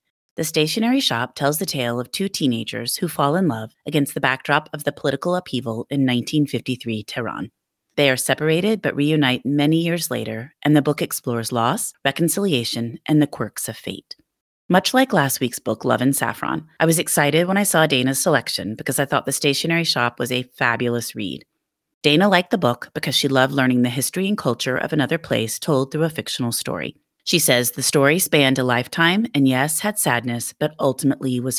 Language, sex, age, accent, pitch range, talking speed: English, female, 30-49, American, 125-160 Hz, 195 wpm